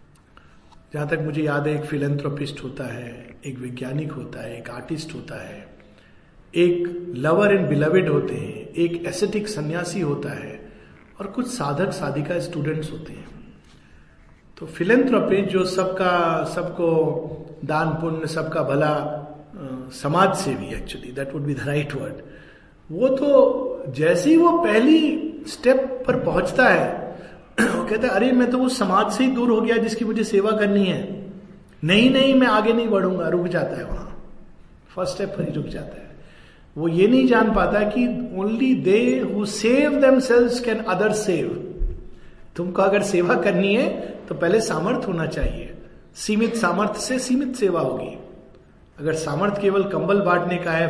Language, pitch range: Hindi, 155-215 Hz